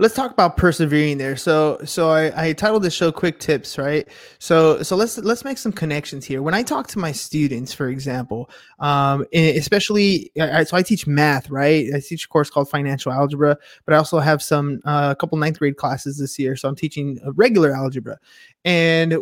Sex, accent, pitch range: male, American, 150-180 Hz